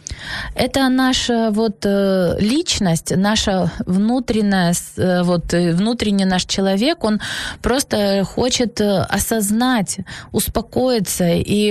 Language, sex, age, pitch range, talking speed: Ukrainian, female, 20-39, 195-235 Hz, 75 wpm